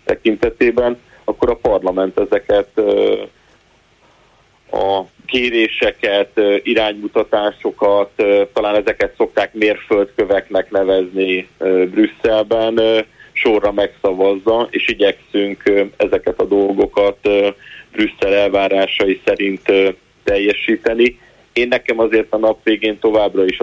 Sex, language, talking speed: male, Hungarian, 80 wpm